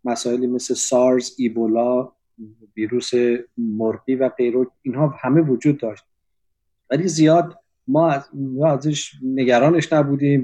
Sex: male